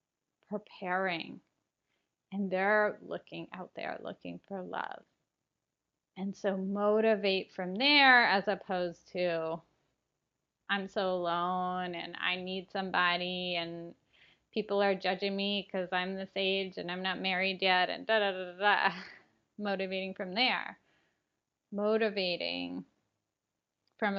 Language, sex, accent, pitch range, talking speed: English, female, American, 180-220 Hz, 120 wpm